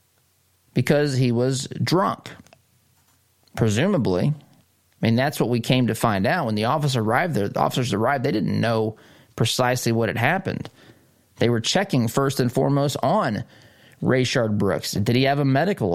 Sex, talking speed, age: male, 160 wpm, 20-39